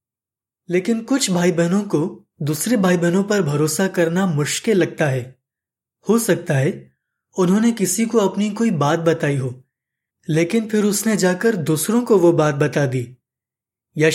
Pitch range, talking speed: 140-195 Hz, 155 wpm